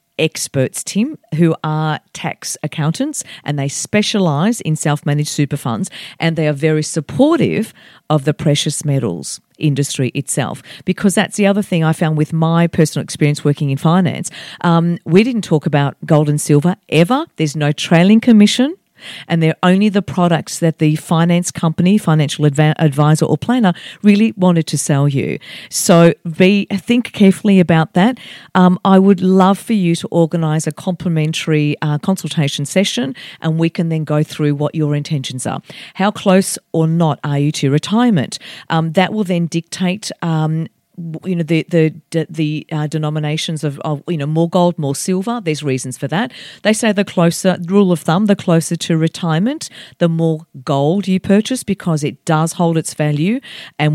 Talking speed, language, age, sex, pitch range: 175 wpm, English, 40-59, female, 150-190 Hz